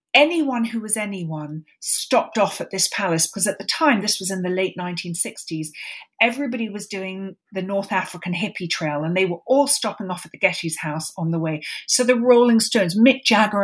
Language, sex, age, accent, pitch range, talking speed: English, female, 40-59, British, 170-225 Hz, 200 wpm